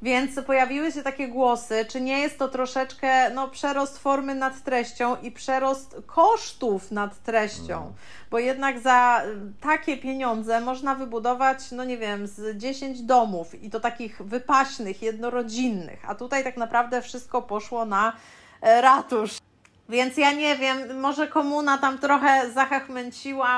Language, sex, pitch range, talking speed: Polish, female, 225-265 Hz, 145 wpm